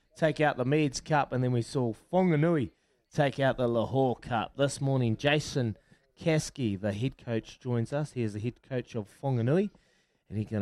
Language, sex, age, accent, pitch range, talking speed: English, male, 20-39, Australian, 110-135 Hz, 190 wpm